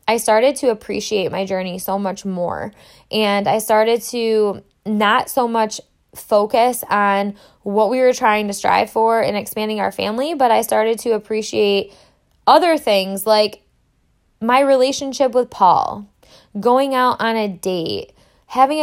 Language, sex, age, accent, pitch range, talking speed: English, female, 10-29, American, 205-245 Hz, 150 wpm